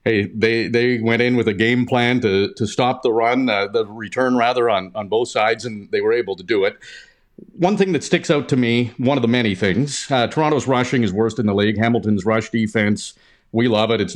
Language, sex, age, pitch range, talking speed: English, male, 50-69, 110-145 Hz, 235 wpm